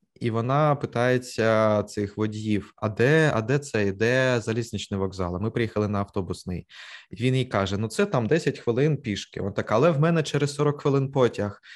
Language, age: Ukrainian, 20-39